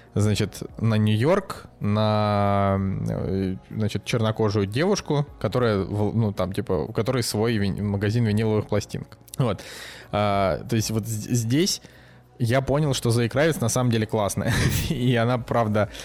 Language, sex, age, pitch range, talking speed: Russian, male, 20-39, 105-125 Hz, 130 wpm